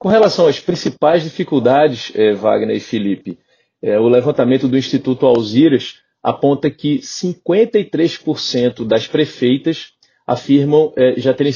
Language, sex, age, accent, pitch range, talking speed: Portuguese, male, 30-49, Brazilian, 120-145 Hz, 125 wpm